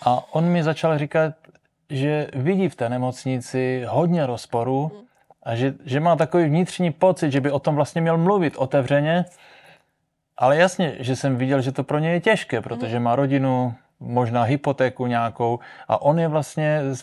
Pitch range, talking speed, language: 120-155 Hz, 175 wpm, Czech